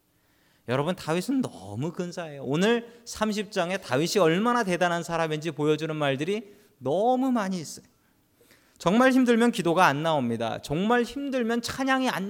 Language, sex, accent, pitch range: Korean, male, native, 125-210 Hz